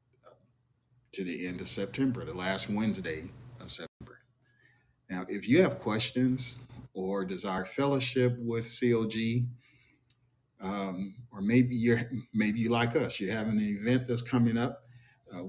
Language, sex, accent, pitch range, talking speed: English, male, American, 100-125 Hz, 140 wpm